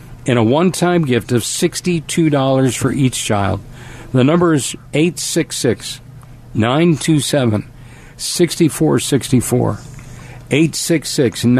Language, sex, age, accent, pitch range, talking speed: English, male, 50-69, American, 125-145 Hz, 65 wpm